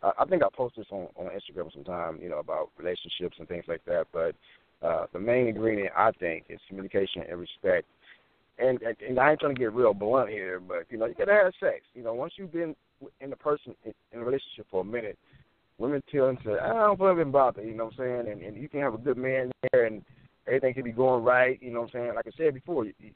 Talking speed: 260 wpm